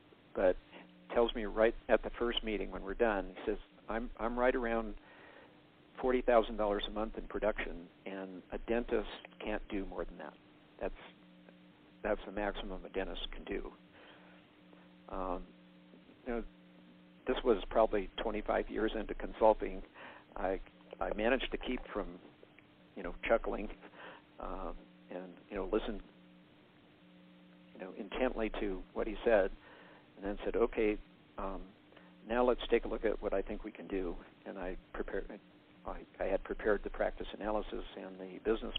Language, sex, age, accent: English, male, 50-69, American